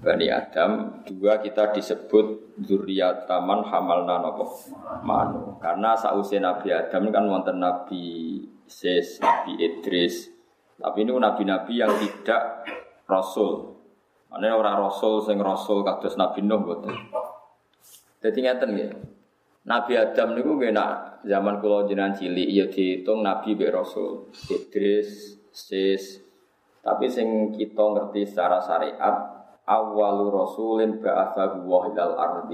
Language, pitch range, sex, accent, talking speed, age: Indonesian, 95-115 Hz, male, native, 115 wpm, 20-39